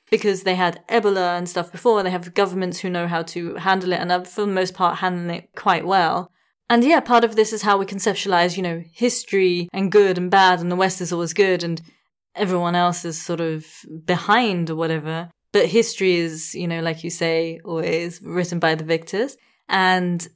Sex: female